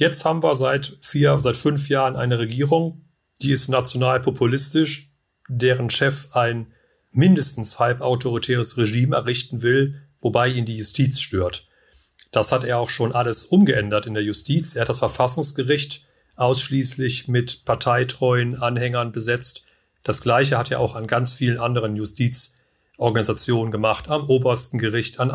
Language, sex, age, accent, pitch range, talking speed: German, male, 40-59, German, 115-140 Hz, 140 wpm